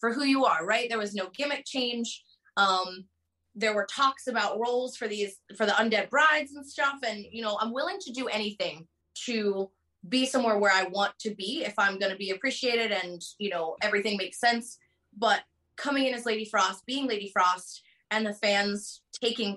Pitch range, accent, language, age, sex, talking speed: 200-240 Hz, American, English, 20-39, female, 195 wpm